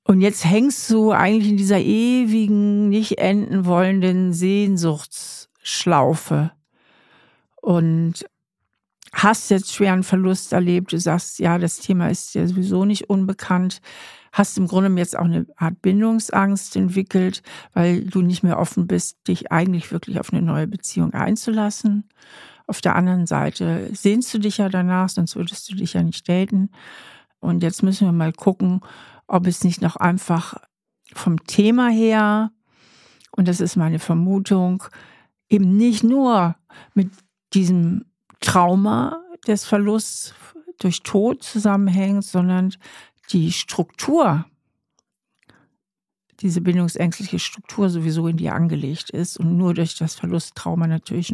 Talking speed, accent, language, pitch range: 135 wpm, German, German, 175-205 Hz